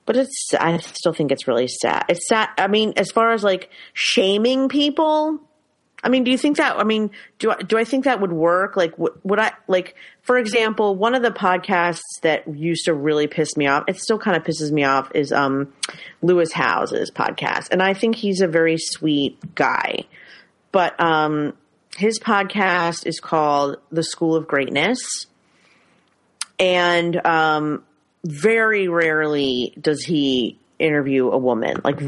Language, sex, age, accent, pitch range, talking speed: English, female, 30-49, American, 145-190 Hz, 170 wpm